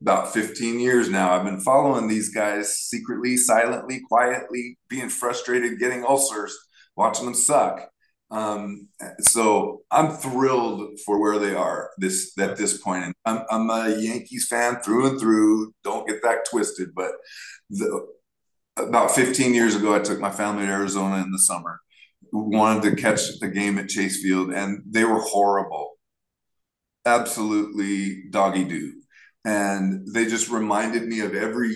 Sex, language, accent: male, English, American